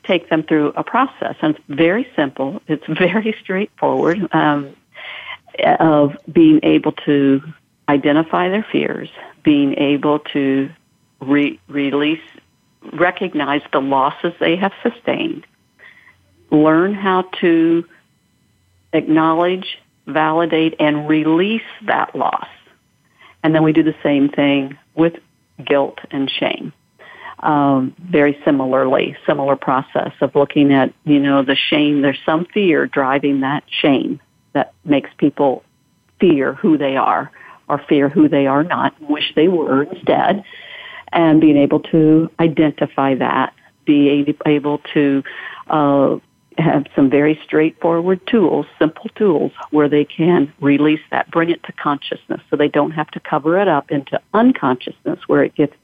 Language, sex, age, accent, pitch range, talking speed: English, female, 50-69, American, 145-180 Hz, 135 wpm